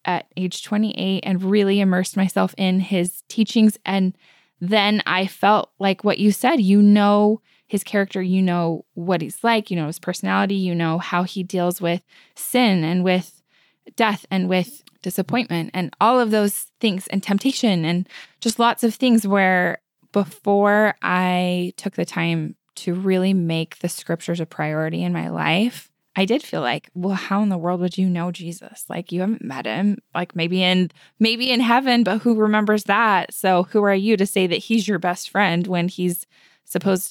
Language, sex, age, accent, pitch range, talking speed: English, female, 10-29, American, 175-205 Hz, 185 wpm